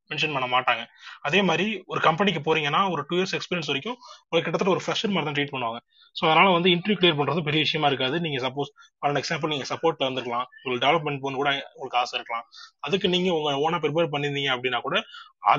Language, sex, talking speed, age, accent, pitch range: Tamil, male, 190 wpm, 20-39, native, 135-180 Hz